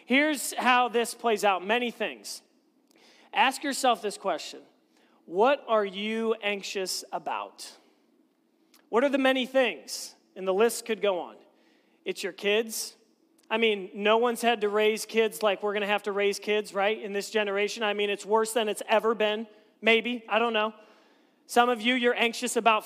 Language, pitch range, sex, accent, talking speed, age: English, 220-260 Hz, male, American, 180 wpm, 40-59